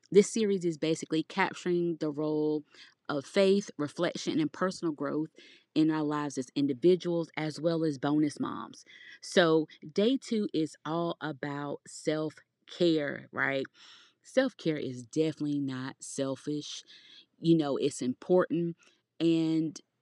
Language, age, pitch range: English, 30-49, 150-200 Hz